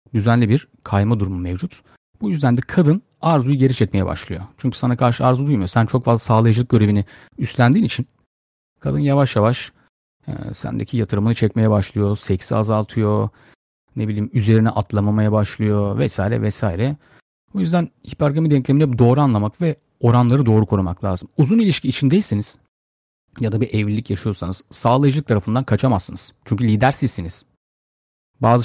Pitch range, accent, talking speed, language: 105-130 Hz, native, 140 wpm, Turkish